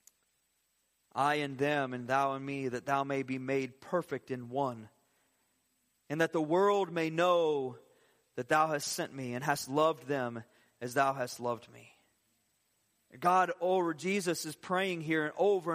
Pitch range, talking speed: 130-165 Hz, 170 wpm